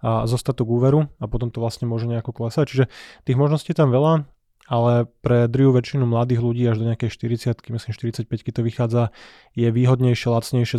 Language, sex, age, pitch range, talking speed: Slovak, male, 20-39, 115-130 Hz, 195 wpm